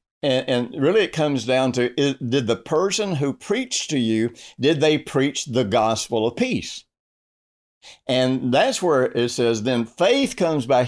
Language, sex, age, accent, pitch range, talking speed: English, male, 60-79, American, 115-170 Hz, 160 wpm